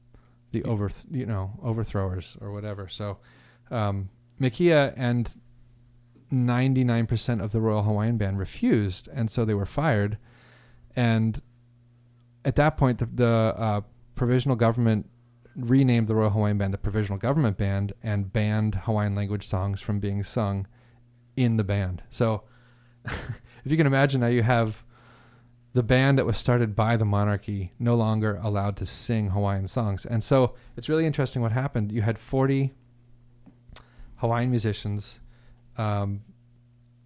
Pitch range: 105-120 Hz